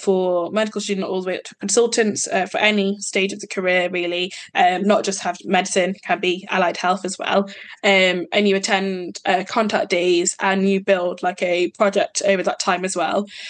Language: English